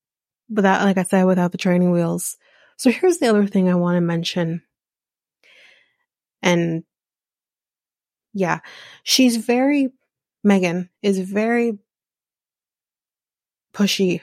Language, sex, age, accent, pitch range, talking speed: English, female, 20-39, American, 180-230 Hz, 105 wpm